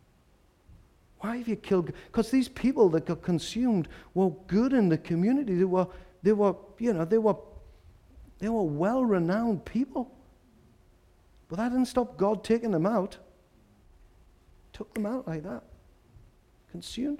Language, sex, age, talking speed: English, male, 50-69, 145 wpm